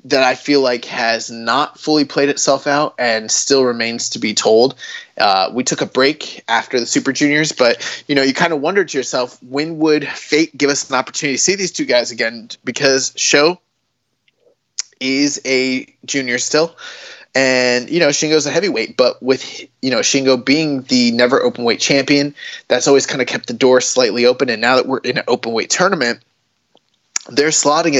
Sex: male